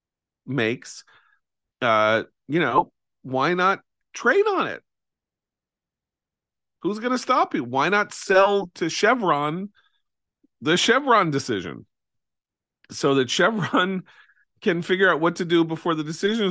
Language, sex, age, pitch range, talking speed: English, male, 40-59, 115-170 Hz, 120 wpm